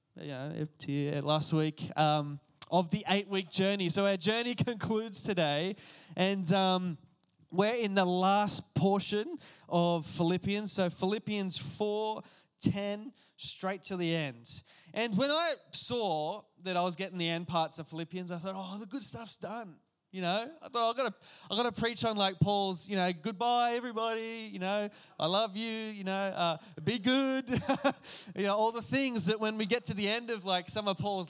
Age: 20-39